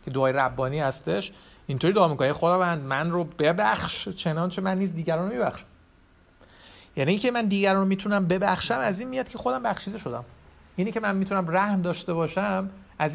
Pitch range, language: 130-175 Hz, Persian